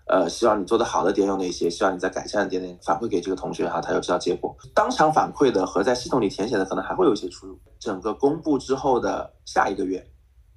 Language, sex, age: Chinese, male, 20-39